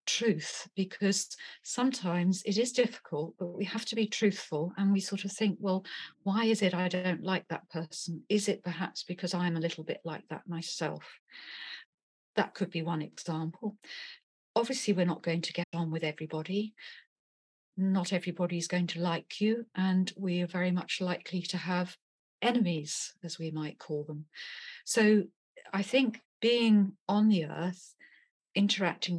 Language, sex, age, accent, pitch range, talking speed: English, female, 40-59, British, 170-200 Hz, 165 wpm